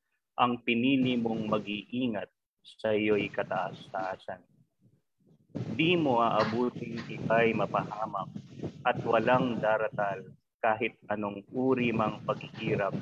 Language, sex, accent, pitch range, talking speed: Filipino, male, native, 110-130 Hz, 90 wpm